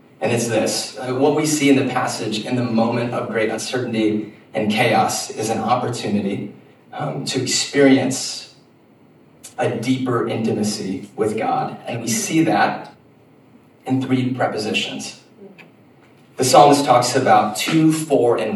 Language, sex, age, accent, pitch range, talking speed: English, male, 30-49, American, 110-140 Hz, 135 wpm